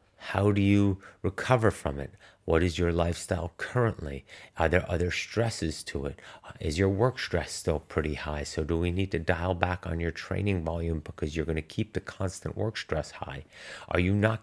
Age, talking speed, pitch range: 30-49, 200 wpm, 80-100 Hz